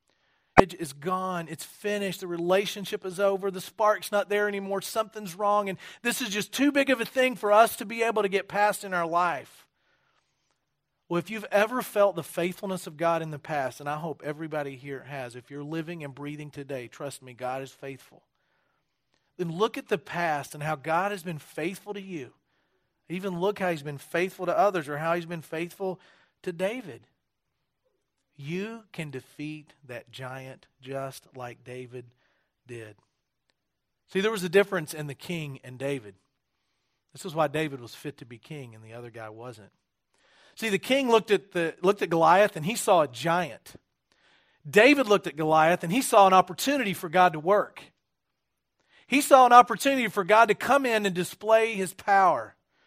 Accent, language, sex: American, English, male